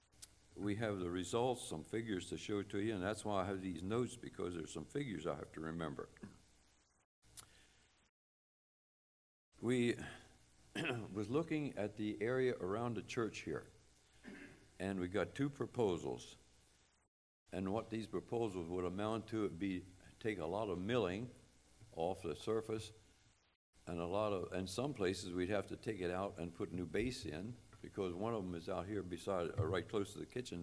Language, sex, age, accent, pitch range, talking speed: English, male, 60-79, American, 90-110 Hz, 170 wpm